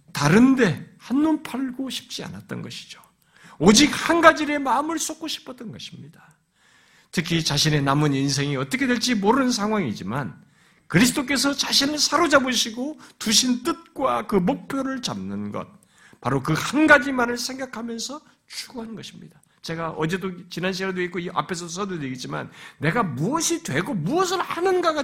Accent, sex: native, male